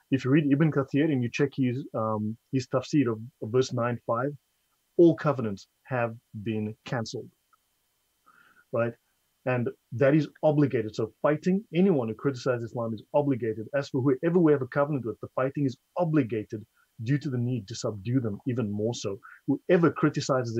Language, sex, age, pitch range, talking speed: English, male, 30-49, 110-140 Hz, 165 wpm